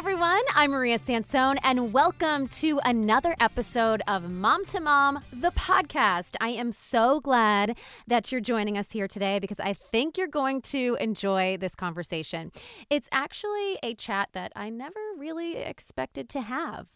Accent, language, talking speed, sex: American, English, 165 wpm, female